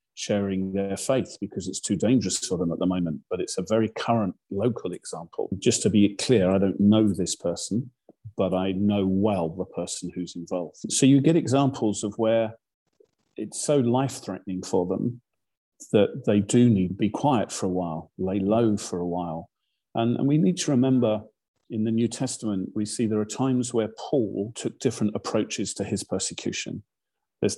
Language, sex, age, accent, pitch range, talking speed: English, male, 40-59, British, 100-115 Hz, 185 wpm